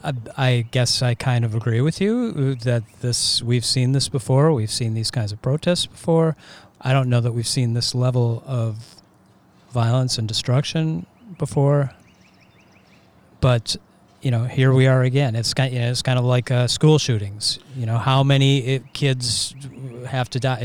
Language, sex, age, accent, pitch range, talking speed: English, male, 40-59, American, 115-135 Hz, 175 wpm